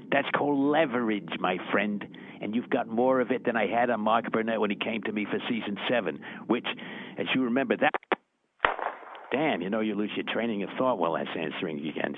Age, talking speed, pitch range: 60-79, 210 wpm, 115-145 Hz